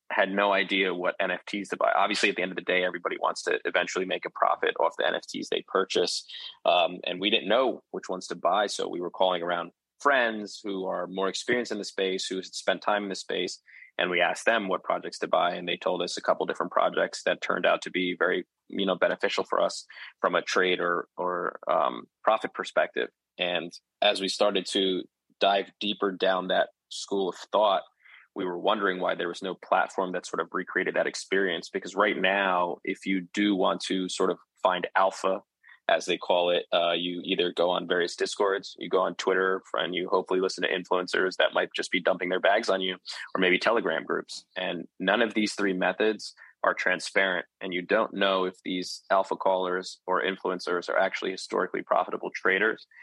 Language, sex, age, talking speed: English, male, 20-39, 210 wpm